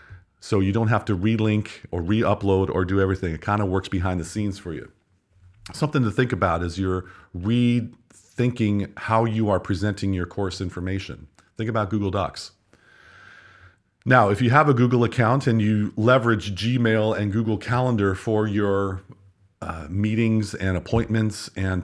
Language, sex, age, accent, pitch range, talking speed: English, male, 40-59, American, 95-115 Hz, 165 wpm